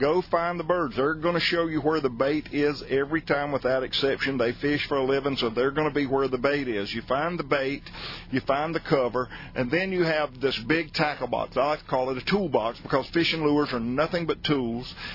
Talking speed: 240 wpm